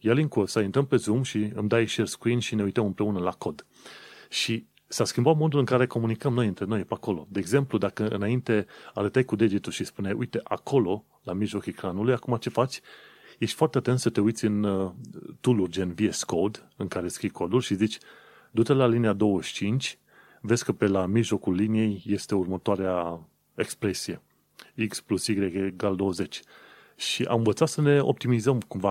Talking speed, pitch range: 185 wpm, 100-125 Hz